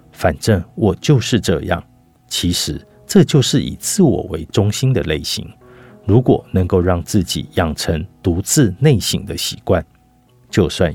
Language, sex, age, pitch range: Chinese, male, 50-69, 85-120 Hz